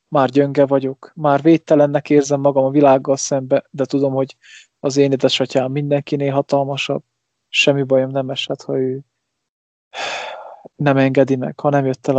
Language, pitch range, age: English, 130-145 Hz, 20-39